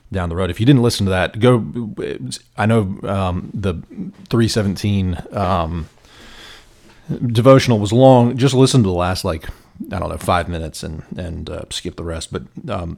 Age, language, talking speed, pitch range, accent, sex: 30-49, English, 175 wpm, 85-110 Hz, American, male